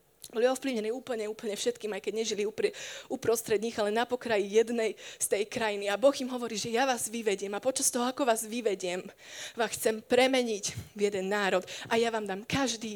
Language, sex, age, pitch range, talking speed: Slovak, female, 20-39, 210-250 Hz, 190 wpm